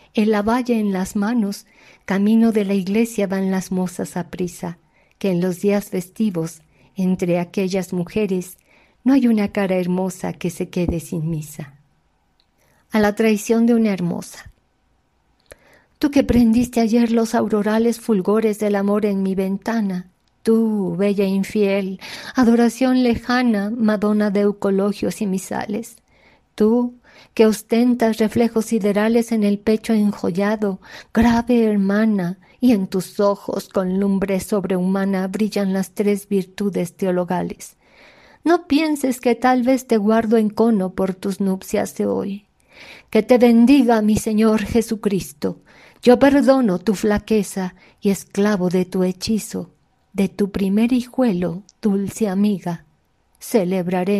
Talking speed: 135 wpm